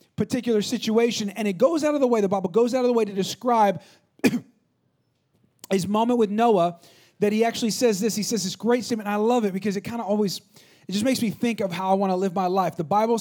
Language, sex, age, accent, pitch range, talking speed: English, male, 30-49, American, 215-270 Hz, 255 wpm